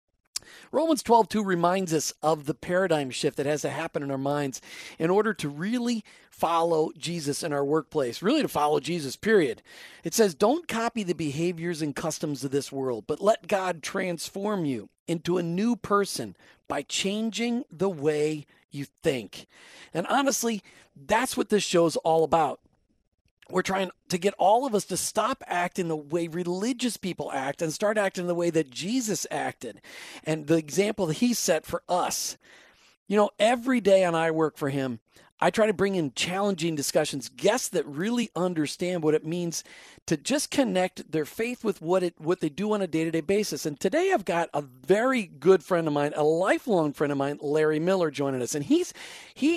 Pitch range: 155-210 Hz